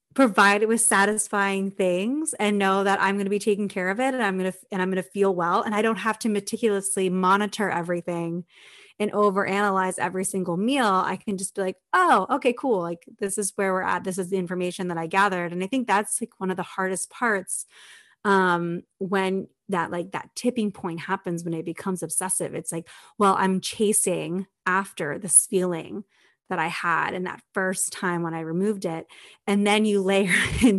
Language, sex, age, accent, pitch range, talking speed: English, female, 30-49, American, 185-215 Hz, 205 wpm